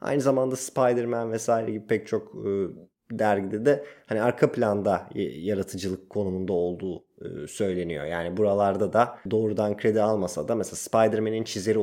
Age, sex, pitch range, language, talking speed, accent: 30-49, male, 100-125 Hz, Turkish, 140 wpm, native